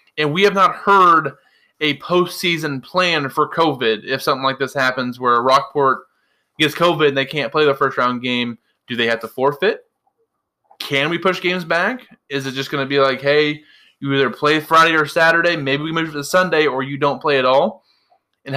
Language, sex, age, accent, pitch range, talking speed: English, male, 20-39, American, 135-165 Hz, 200 wpm